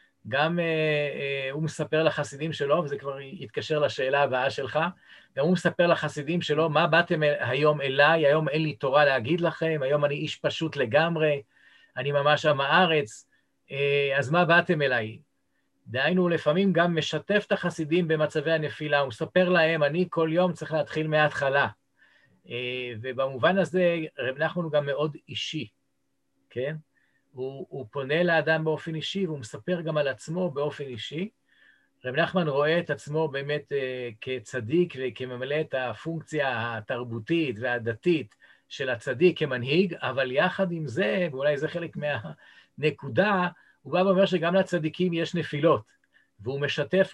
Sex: male